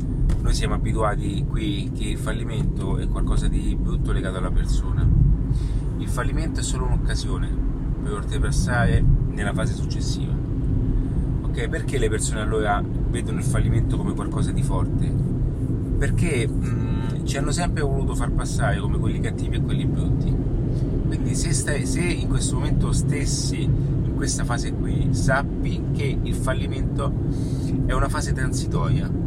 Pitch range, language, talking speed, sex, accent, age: 130-140 Hz, Italian, 140 wpm, male, native, 30-49